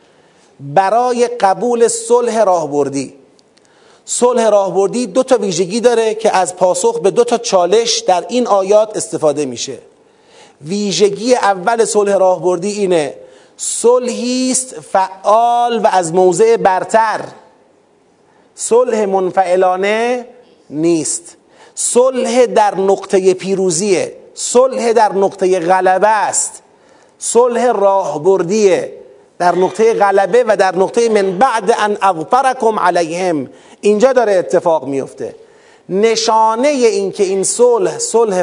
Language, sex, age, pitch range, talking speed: Persian, male, 40-59, 190-255 Hz, 105 wpm